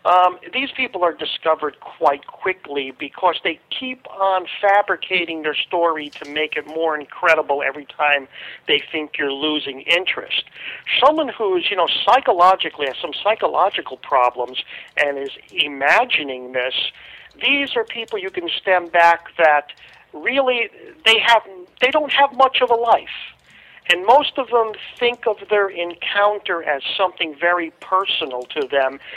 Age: 50-69